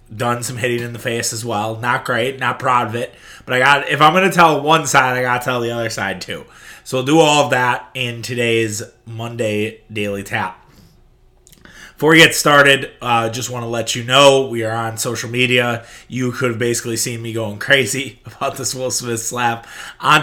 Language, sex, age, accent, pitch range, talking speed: English, male, 20-39, American, 120-140 Hz, 220 wpm